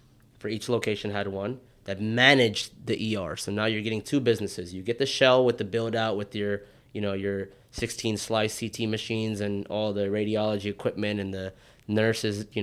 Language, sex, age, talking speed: English, male, 20-39, 195 wpm